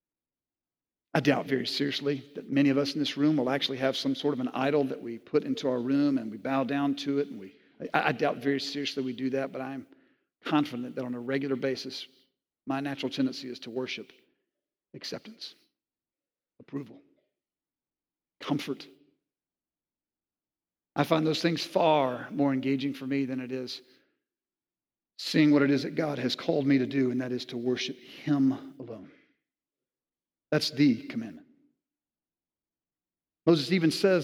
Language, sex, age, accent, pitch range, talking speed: English, male, 50-69, American, 135-175 Hz, 160 wpm